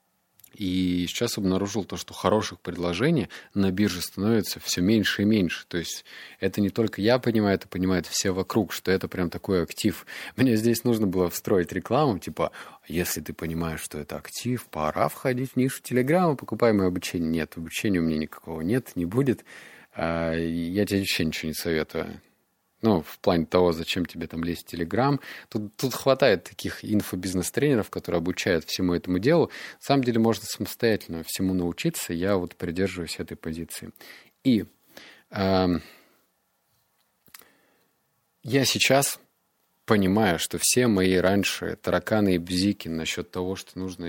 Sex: male